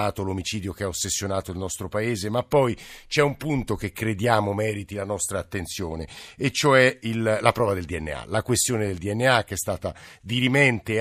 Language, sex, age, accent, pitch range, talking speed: Italian, male, 50-69, native, 100-125 Hz, 180 wpm